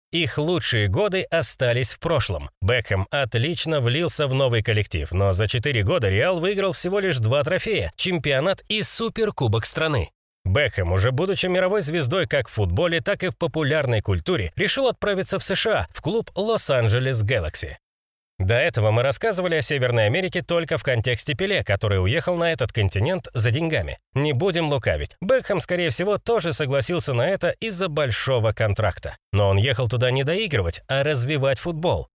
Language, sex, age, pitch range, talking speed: Russian, male, 30-49, 110-180 Hz, 160 wpm